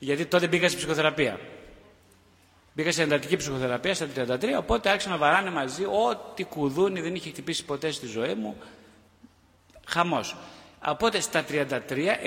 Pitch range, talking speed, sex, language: 125-170 Hz, 140 wpm, male, Greek